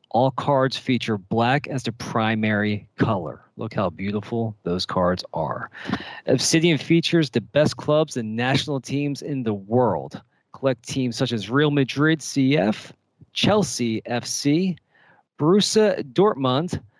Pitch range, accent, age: 110-150 Hz, American, 40-59